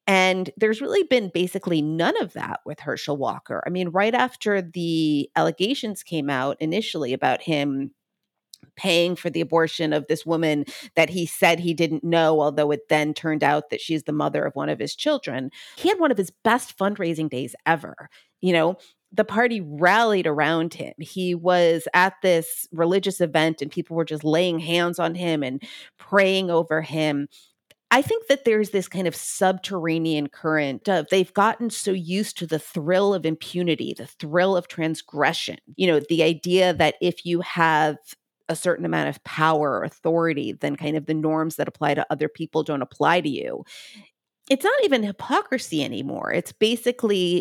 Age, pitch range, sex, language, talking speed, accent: 30-49, 155-190 Hz, female, English, 180 wpm, American